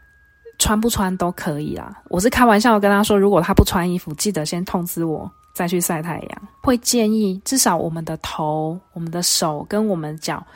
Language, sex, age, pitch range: Chinese, female, 20-39, 175-225 Hz